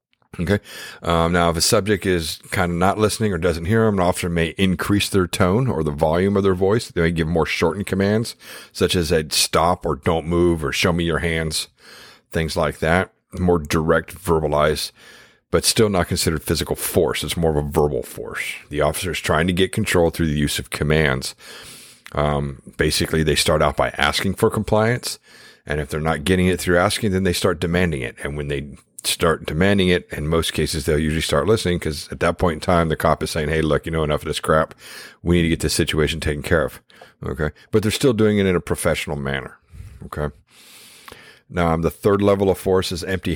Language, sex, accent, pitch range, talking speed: English, male, American, 80-95 Hz, 215 wpm